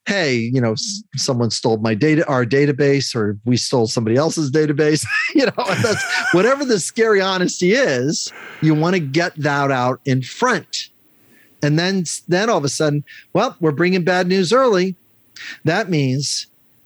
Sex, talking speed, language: male, 165 wpm, English